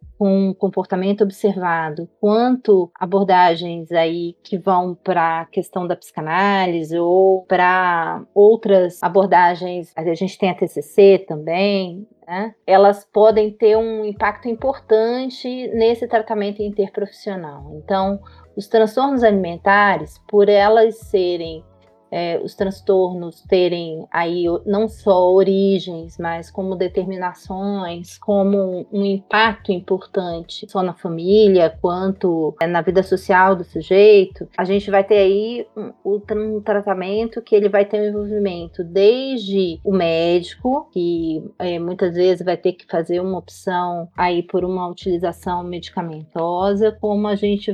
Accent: Brazilian